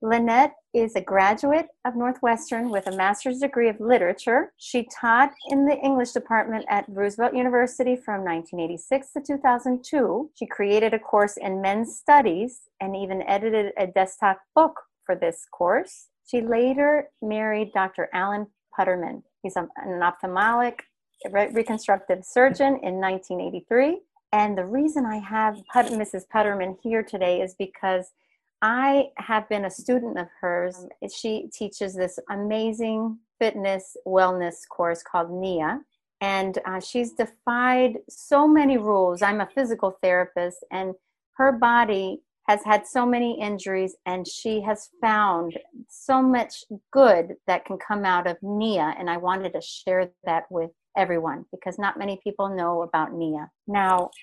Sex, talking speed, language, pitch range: female, 145 wpm, English, 190-245 Hz